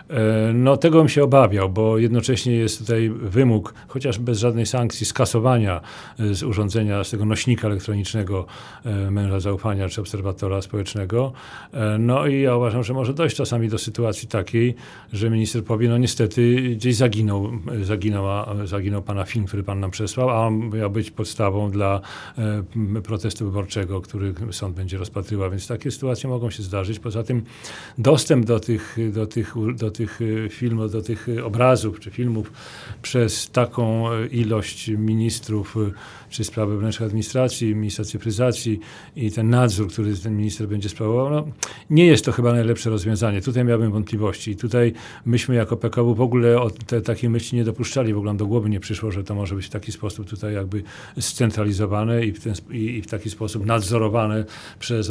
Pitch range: 105-120 Hz